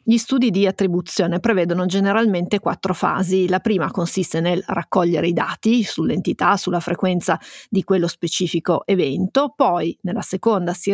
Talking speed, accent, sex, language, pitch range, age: 145 wpm, native, female, Italian, 185-215 Hz, 30-49